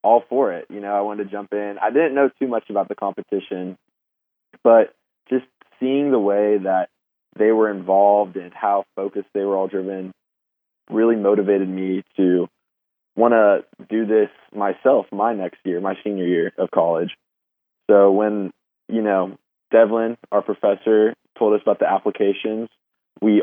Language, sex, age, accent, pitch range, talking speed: English, male, 20-39, American, 100-115 Hz, 165 wpm